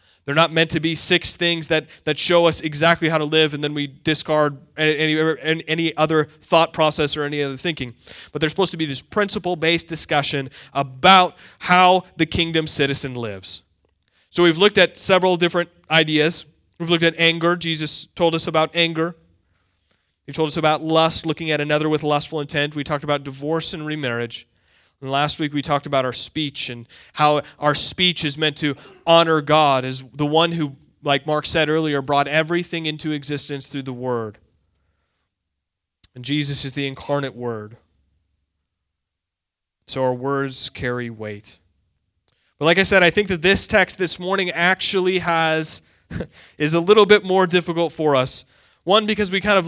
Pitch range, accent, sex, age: 140-170 Hz, American, male, 20-39